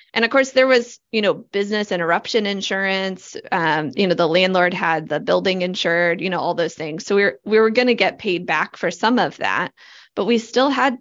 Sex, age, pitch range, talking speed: female, 20-39, 180-225 Hz, 220 wpm